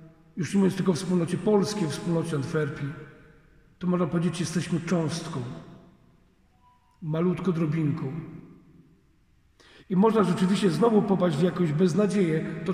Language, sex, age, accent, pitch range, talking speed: Polish, male, 50-69, native, 175-210 Hz, 120 wpm